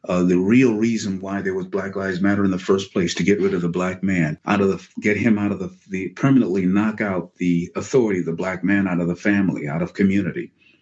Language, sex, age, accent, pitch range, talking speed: English, male, 50-69, American, 95-120 Hz, 250 wpm